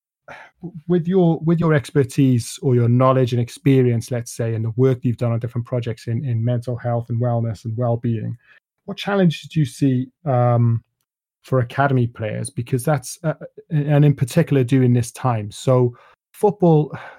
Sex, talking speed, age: male, 170 wpm, 30-49